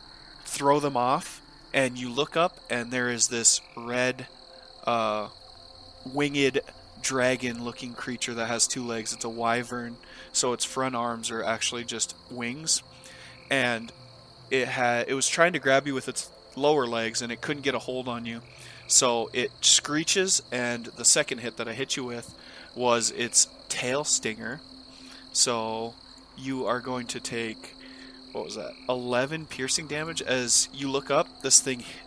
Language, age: English, 20-39